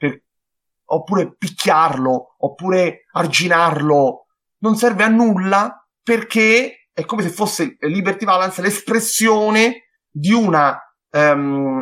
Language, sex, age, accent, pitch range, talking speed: Italian, male, 30-49, native, 150-200 Hz, 100 wpm